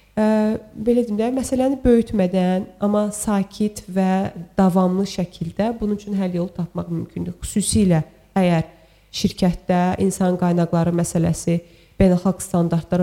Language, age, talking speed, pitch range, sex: English, 30-49, 95 wpm, 170-210 Hz, female